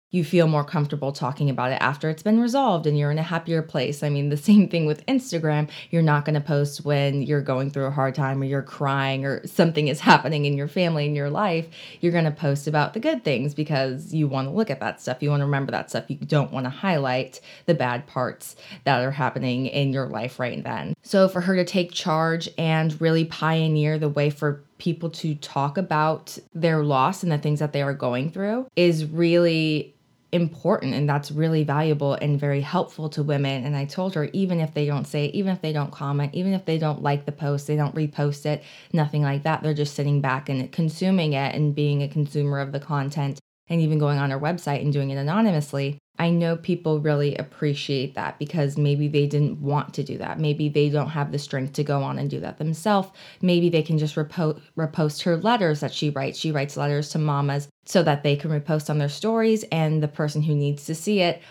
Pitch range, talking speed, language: 145-165 Hz, 225 wpm, English